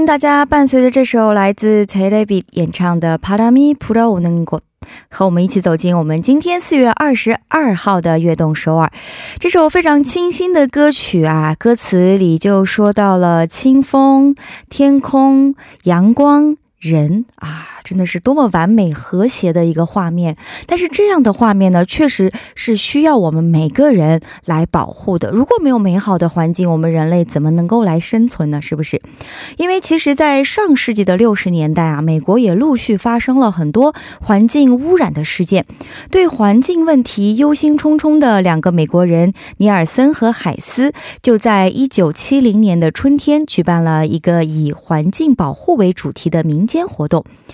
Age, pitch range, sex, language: 20-39, 170-275 Hz, female, Korean